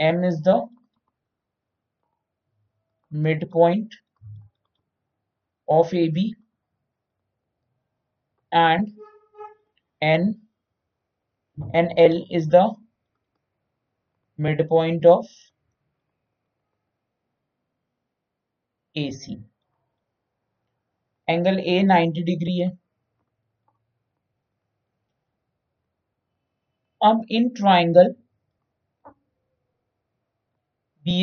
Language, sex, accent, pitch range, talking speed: Hindi, male, native, 130-190 Hz, 45 wpm